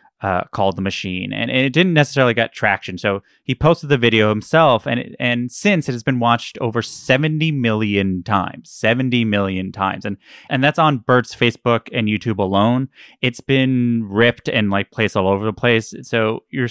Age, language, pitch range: 20-39, English, 105-140 Hz